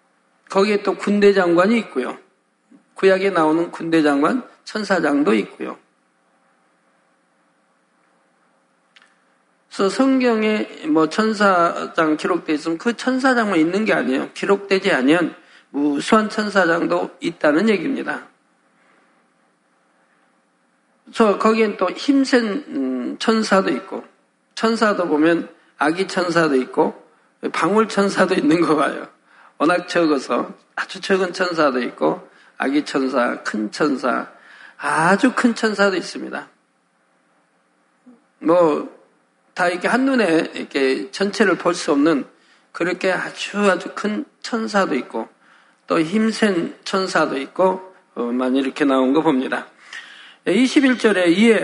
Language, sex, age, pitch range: Korean, male, 50-69, 150-220 Hz